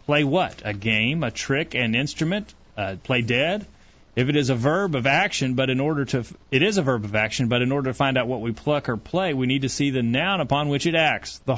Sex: male